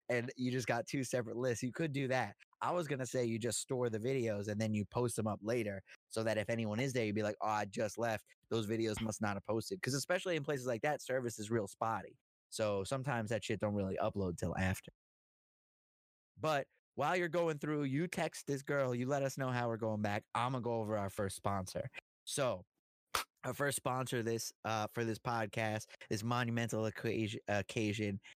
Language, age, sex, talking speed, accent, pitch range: English, 20-39, male, 215 wpm, American, 105-130 Hz